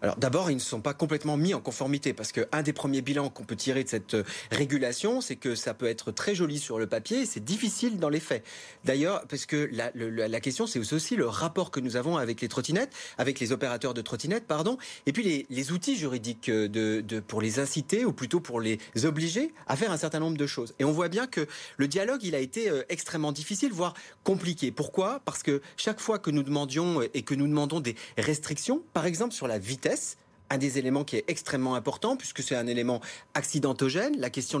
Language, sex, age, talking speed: French, male, 30-49, 225 wpm